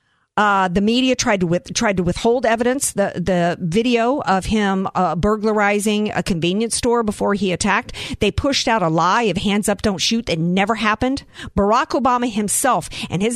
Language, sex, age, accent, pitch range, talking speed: English, female, 50-69, American, 200-275 Hz, 185 wpm